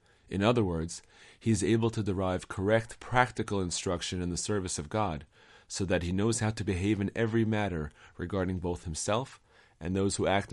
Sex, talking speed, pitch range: male, 190 wpm, 85-105 Hz